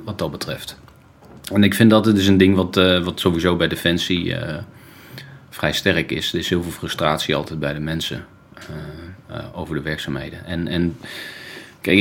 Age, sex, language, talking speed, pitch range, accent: 30-49, male, Dutch, 190 wpm, 85-100 Hz, Dutch